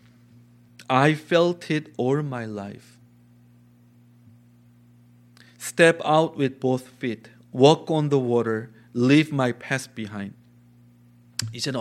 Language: Korean